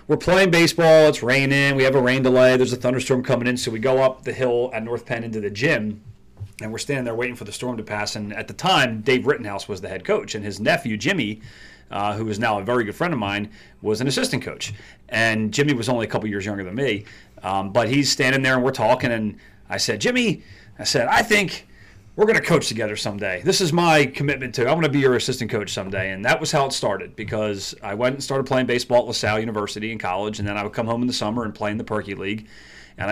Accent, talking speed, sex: American, 260 wpm, male